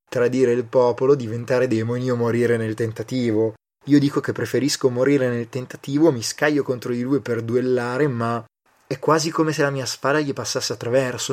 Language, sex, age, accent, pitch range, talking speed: Italian, male, 20-39, native, 115-130 Hz, 180 wpm